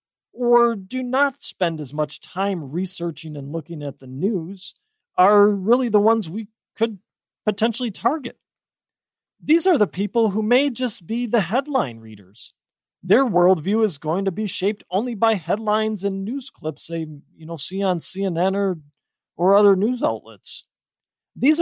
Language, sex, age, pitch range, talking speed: English, male, 40-59, 160-235 Hz, 155 wpm